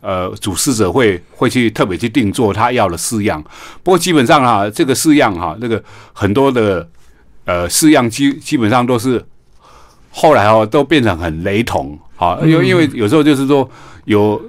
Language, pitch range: Chinese, 100-130 Hz